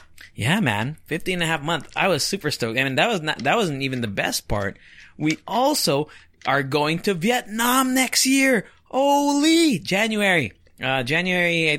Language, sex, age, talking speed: English, male, 20-39, 180 wpm